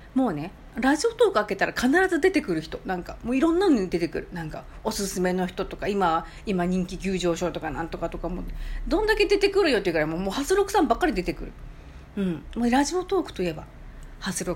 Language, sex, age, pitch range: Japanese, female, 40-59, 175-275 Hz